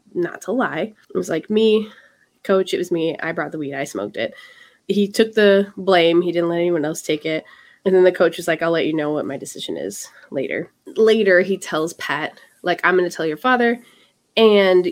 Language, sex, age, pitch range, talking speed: English, female, 20-39, 170-215 Hz, 225 wpm